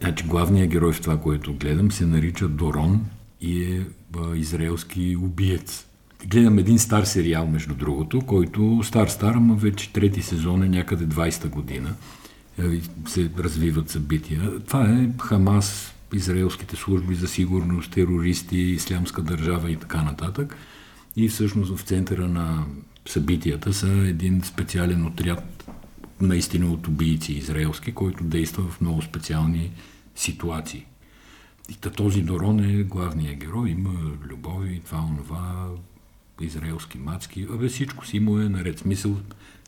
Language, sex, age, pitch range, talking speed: Bulgarian, male, 50-69, 85-100 Hz, 125 wpm